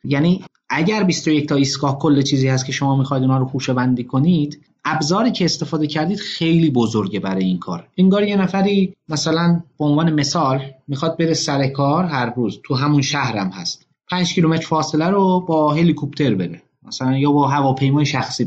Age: 30-49